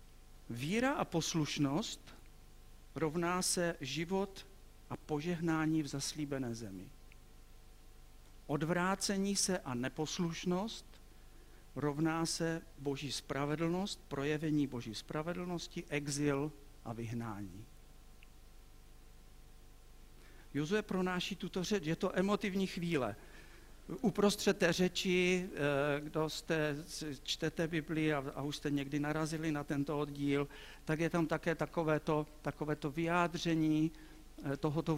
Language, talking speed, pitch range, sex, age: Czech, 100 wpm, 135-165 Hz, male, 50-69